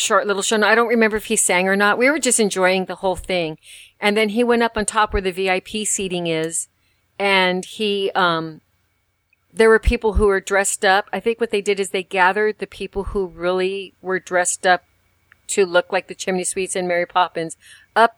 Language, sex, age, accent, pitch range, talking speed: English, female, 50-69, American, 170-200 Hz, 225 wpm